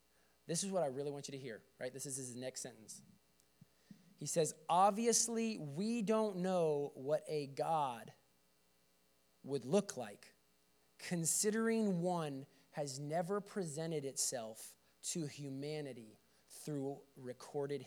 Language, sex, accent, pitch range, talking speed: English, male, American, 115-170 Hz, 125 wpm